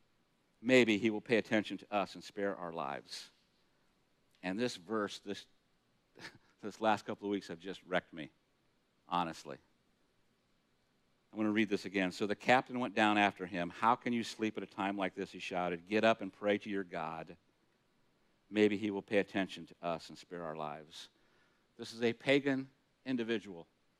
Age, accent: 50-69, American